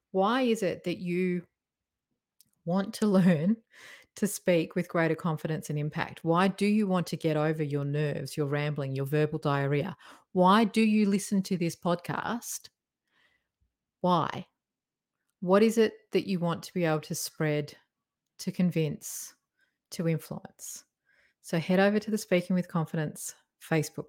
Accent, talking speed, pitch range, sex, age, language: Australian, 150 wpm, 155-195 Hz, female, 30-49, English